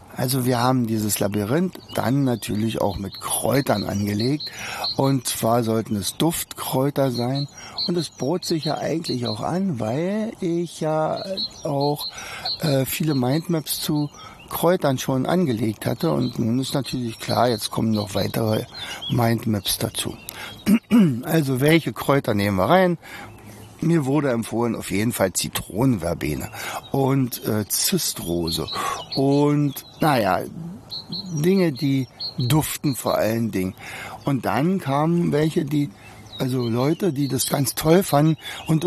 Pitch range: 110-150 Hz